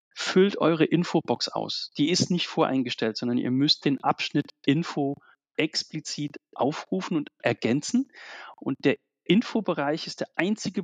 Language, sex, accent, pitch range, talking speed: German, male, German, 140-180 Hz, 135 wpm